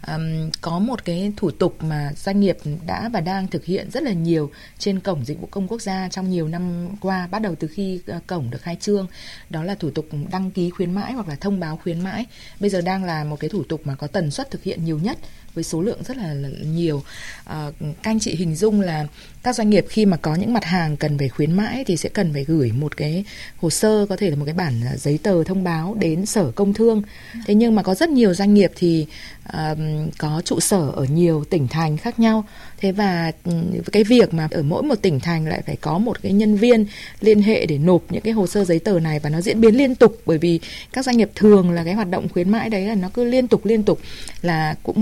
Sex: female